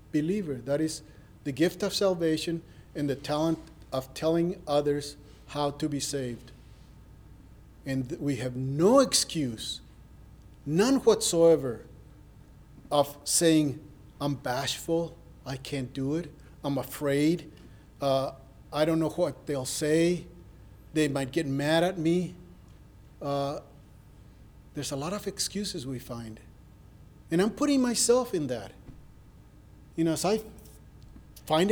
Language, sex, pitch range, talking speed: English, male, 130-170 Hz, 125 wpm